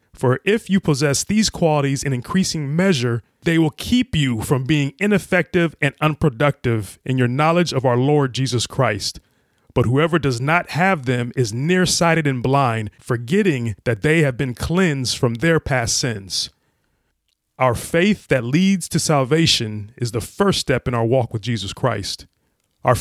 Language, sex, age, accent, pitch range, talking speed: English, male, 30-49, American, 120-160 Hz, 165 wpm